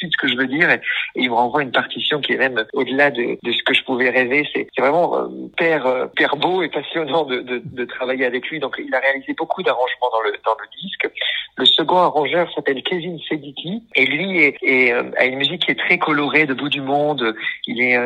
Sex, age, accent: male, 50-69, French